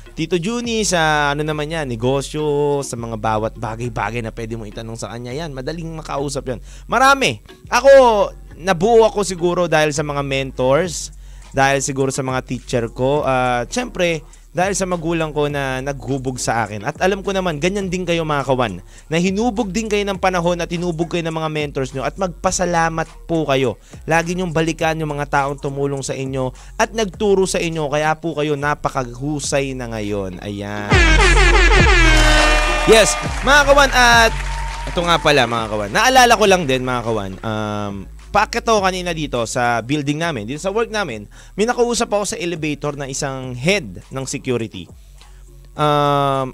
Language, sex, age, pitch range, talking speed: Filipino, male, 20-39, 125-175 Hz, 170 wpm